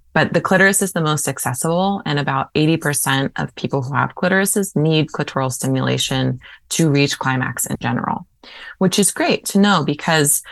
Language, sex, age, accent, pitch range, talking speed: English, female, 20-39, American, 135-170 Hz, 165 wpm